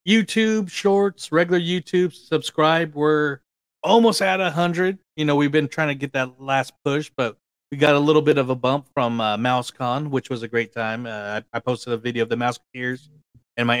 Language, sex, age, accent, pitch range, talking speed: English, male, 30-49, American, 110-145 Hz, 205 wpm